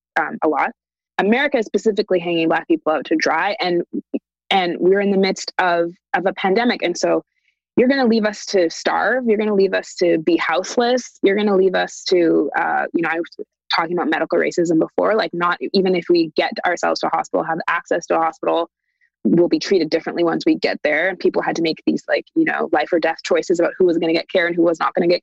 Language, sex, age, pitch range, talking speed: English, female, 20-39, 165-225 Hz, 250 wpm